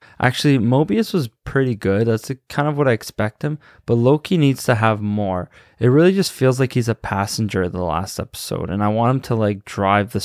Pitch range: 105-130 Hz